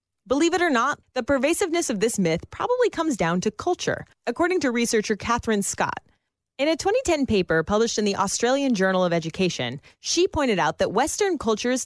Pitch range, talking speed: 185-265 Hz, 180 wpm